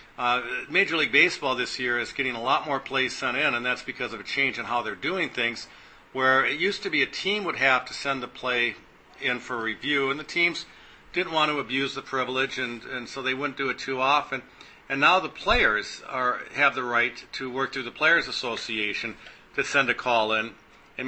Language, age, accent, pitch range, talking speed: English, 50-69, American, 125-140 Hz, 225 wpm